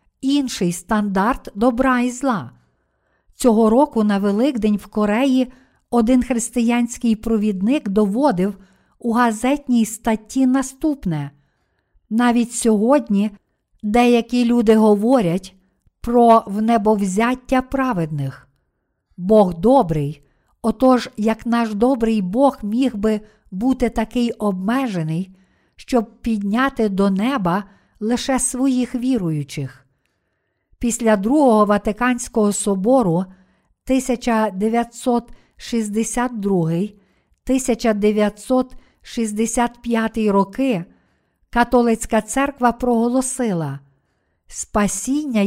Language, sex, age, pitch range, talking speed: Ukrainian, female, 50-69, 205-245 Hz, 75 wpm